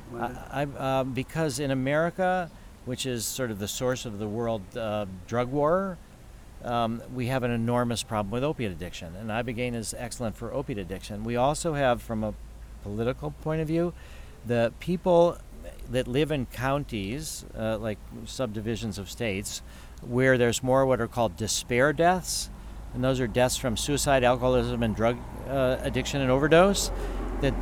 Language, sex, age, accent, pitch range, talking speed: English, male, 50-69, American, 110-135 Hz, 165 wpm